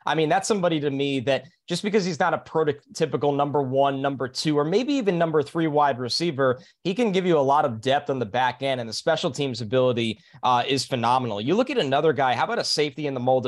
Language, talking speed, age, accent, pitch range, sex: English, 250 wpm, 20-39, American, 135-170 Hz, male